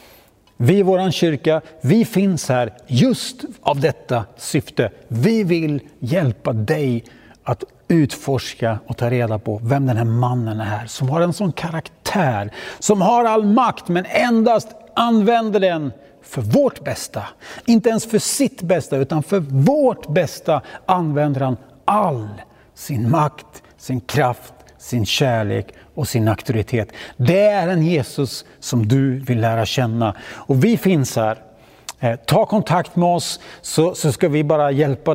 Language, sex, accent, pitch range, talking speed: Swedish, male, native, 125-170 Hz, 150 wpm